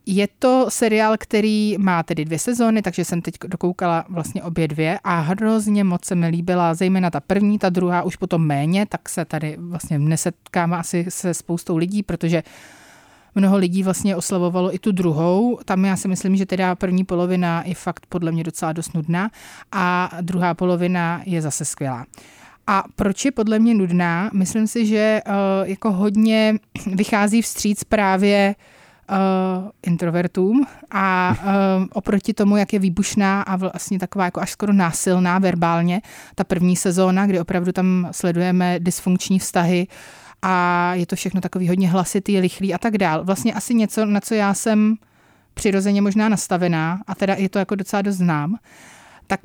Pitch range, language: 175-200 Hz, Czech